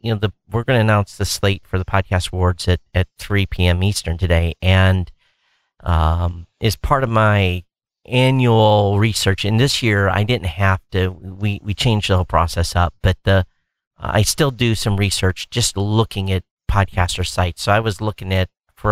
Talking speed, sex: 185 wpm, male